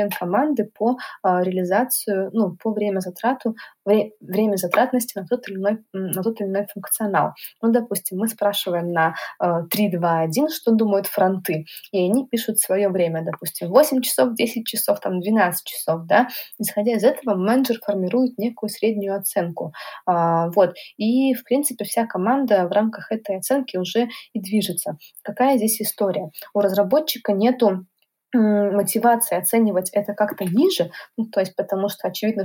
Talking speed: 140 wpm